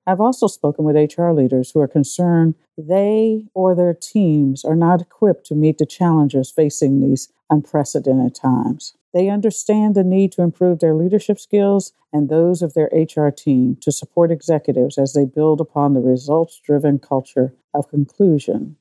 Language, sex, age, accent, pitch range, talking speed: English, female, 50-69, American, 145-180 Hz, 165 wpm